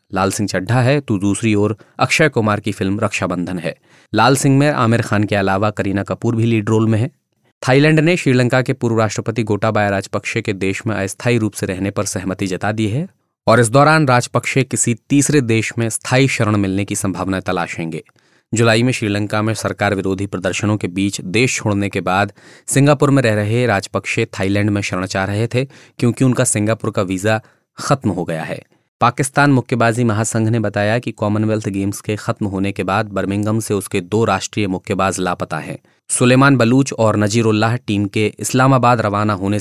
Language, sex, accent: Hindi, male, native